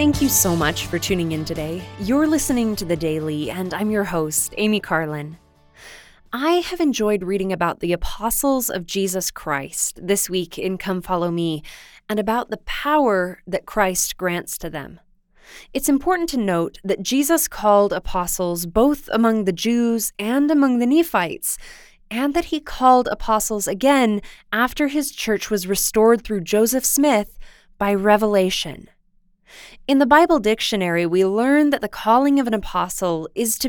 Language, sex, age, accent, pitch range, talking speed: English, female, 20-39, American, 185-245 Hz, 160 wpm